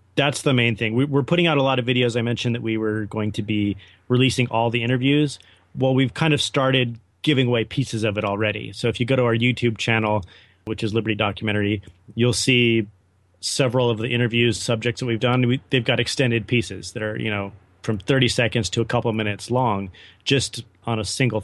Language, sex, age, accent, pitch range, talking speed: English, male, 30-49, American, 105-130 Hz, 215 wpm